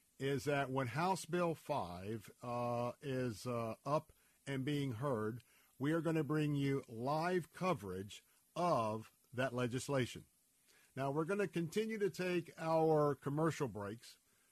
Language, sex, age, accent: English, male, 50-69, American